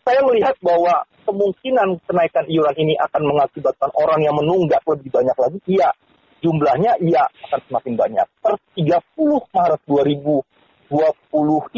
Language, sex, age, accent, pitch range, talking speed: Indonesian, male, 40-59, native, 145-190 Hz, 125 wpm